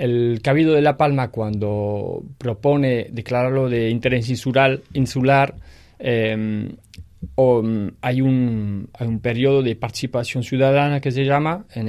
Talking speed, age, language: 125 wpm, 20-39, Spanish